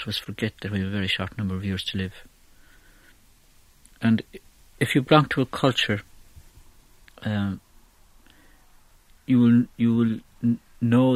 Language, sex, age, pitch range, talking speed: English, male, 60-79, 100-115 Hz, 140 wpm